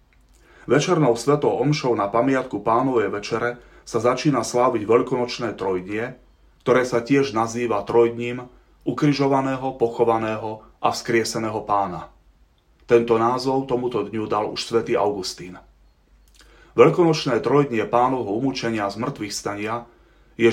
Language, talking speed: Slovak, 110 wpm